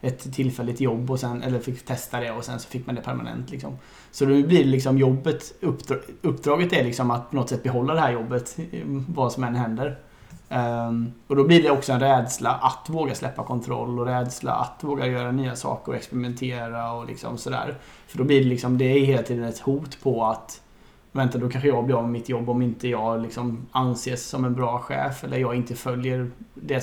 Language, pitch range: Swedish, 120-135 Hz